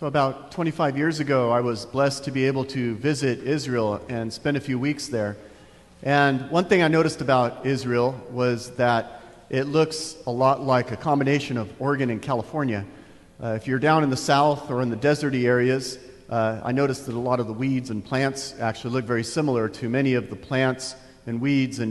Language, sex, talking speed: English, male, 205 wpm